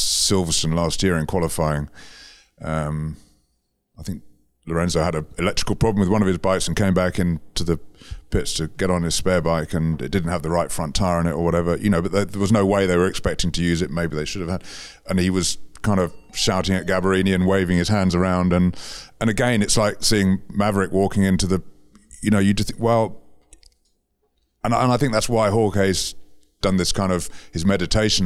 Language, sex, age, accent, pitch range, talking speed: English, male, 30-49, British, 80-100 Hz, 215 wpm